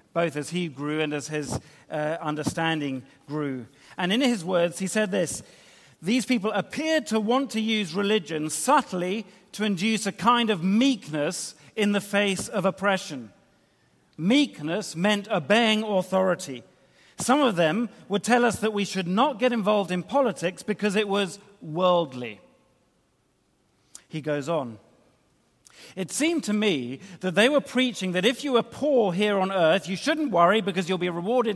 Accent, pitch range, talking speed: British, 165-215 Hz, 160 wpm